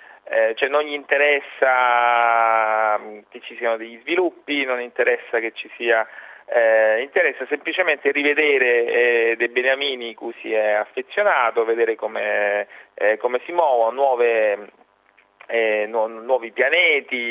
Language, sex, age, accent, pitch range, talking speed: Italian, male, 30-49, native, 110-155 Hz, 130 wpm